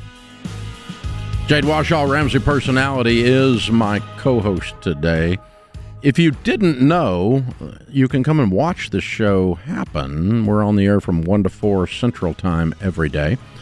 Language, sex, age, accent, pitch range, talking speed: English, male, 50-69, American, 90-115 Hz, 140 wpm